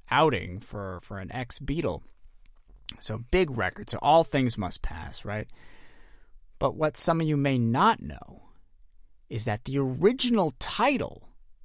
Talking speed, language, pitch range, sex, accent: 140 wpm, English, 105-160 Hz, male, American